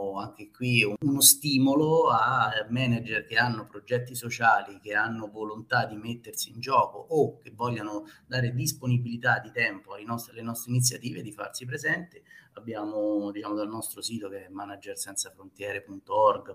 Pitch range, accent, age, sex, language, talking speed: 105-135 Hz, native, 30-49, male, Italian, 140 wpm